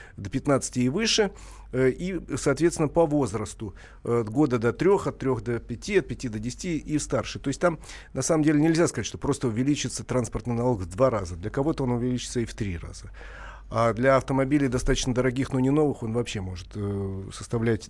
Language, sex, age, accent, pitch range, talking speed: Russian, male, 40-59, native, 110-140 Hz, 195 wpm